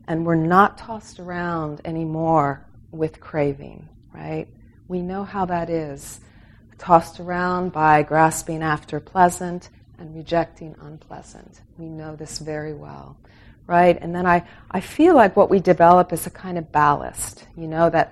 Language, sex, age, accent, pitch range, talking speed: English, female, 40-59, American, 115-170 Hz, 150 wpm